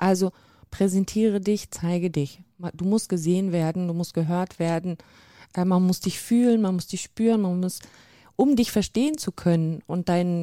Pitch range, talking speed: 170-195 Hz, 175 wpm